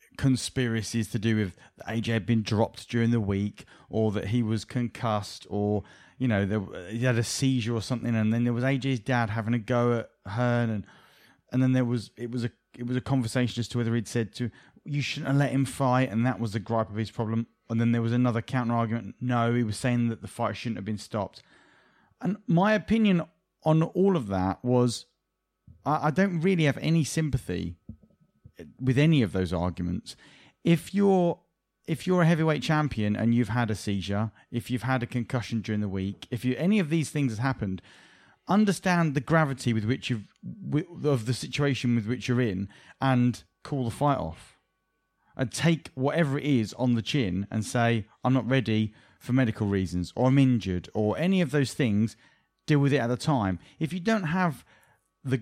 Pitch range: 110-140 Hz